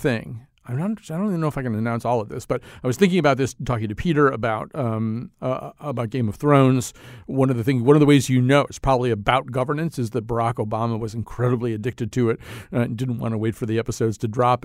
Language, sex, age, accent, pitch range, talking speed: English, male, 50-69, American, 115-145 Hz, 260 wpm